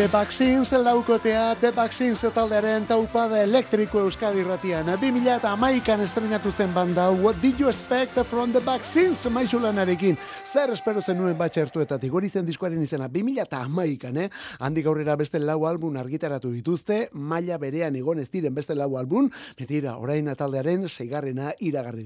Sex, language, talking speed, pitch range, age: male, Spanish, 155 wpm, 135-205 Hz, 30-49